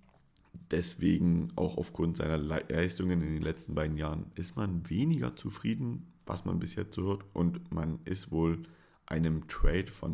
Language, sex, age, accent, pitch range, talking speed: German, male, 40-59, German, 80-100 Hz, 150 wpm